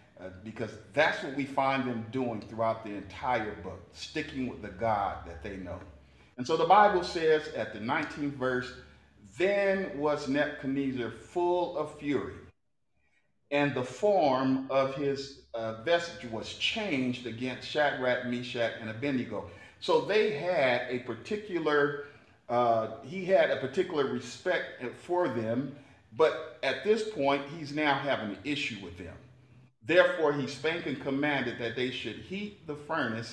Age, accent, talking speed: 50-69, American, 150 wpm